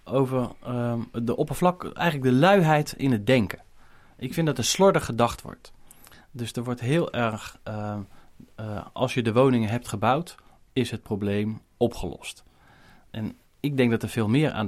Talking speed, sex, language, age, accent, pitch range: 170 wpm, male, Dutch, 30-49, Dutch, 100-125 Hz